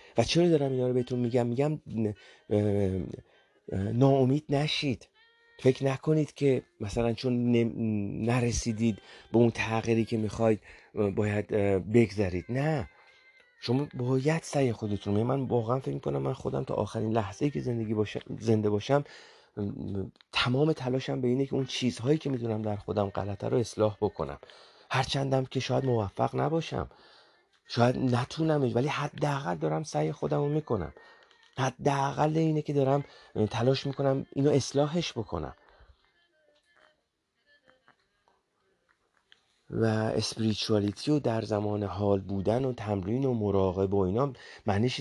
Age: 40-59